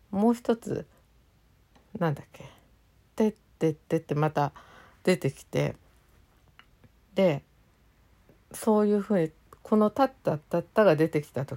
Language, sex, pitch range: Japanese, female, 145-215 Hz